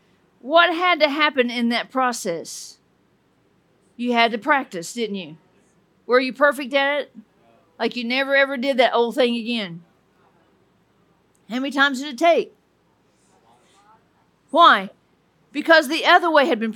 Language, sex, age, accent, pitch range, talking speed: English, female, 50-69, American, 220-295 Hz, 145 wpm